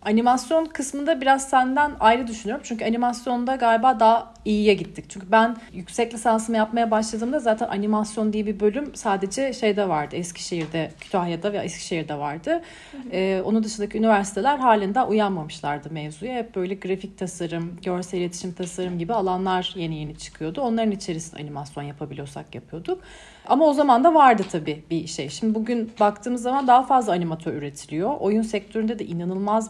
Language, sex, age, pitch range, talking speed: Turkish, female, 40-59, 170-230 Hz, 150 wpm